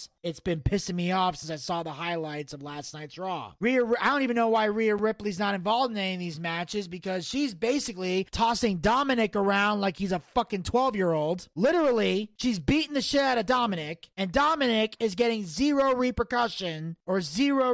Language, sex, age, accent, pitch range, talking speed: English, male, 30-49, American, 205-330 Hz, 185 wpm